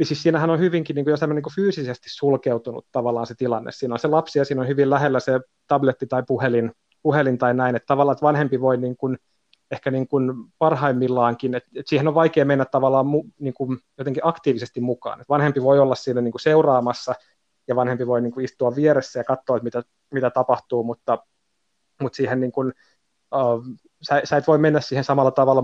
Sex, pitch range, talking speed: male, 125-145 Hz, 195 wpm